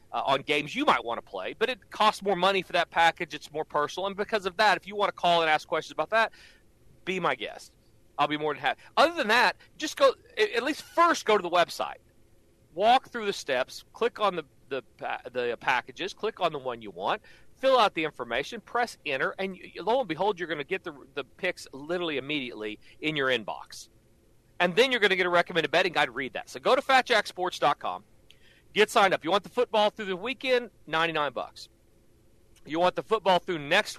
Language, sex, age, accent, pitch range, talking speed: English, male, 40-59, American, 150-215 Hz, 220 wpm